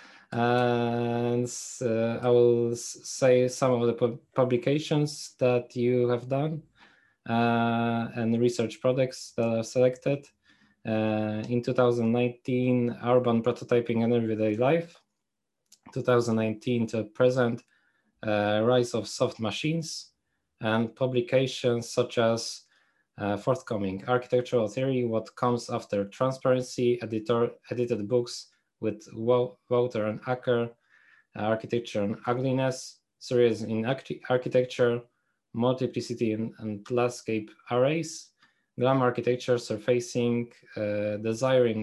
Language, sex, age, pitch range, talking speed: Polish, male, 20-39, 115-125 Hz, 105 wpm